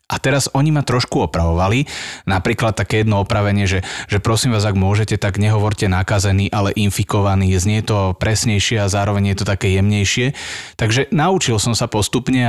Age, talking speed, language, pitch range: 30-49, 170 wpm, Slovak, 95-120 Hz